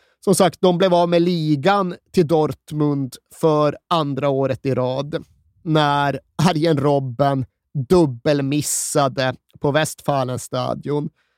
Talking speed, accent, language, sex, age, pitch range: 105 wpm, native, Swedish, male, 30-49, 130-165 Hz